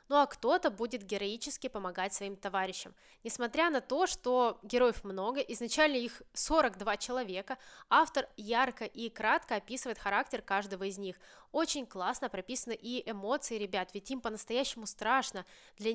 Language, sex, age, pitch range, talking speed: Russian, female, 20-39, 205-275 Hz, 145 wpm